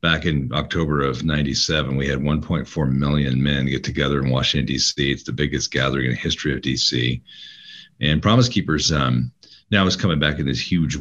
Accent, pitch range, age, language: American, 65-80 Hz, 40-59, English